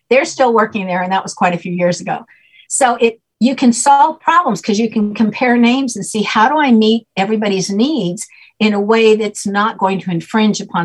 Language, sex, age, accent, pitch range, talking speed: English, female, 60-79, American, 190-235 Hz, 220 wpm